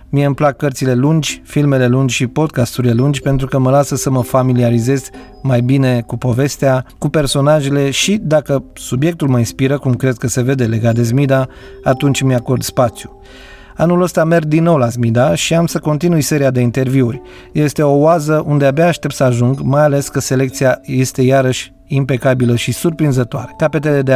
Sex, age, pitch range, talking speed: male, 30-49, 125-150 Hz, 180 wpm